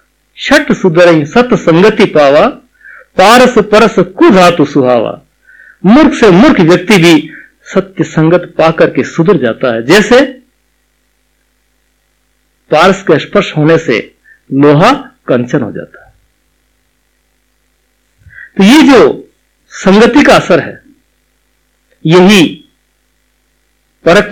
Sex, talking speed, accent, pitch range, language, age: male, 95 wpm, native, 175-250 Hz, Hindi, 50-69